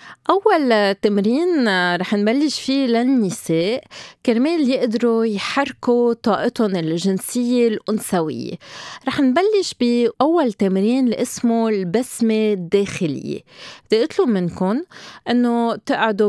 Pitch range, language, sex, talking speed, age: 200-275 Hz, Arabic, female, 90 wpm, 20-39